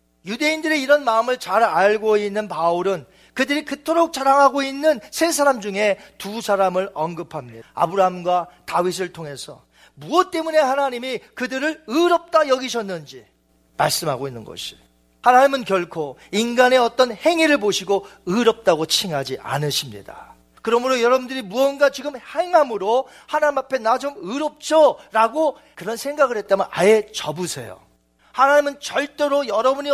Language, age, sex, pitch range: Korean, 40-59, male, 175-275 Hz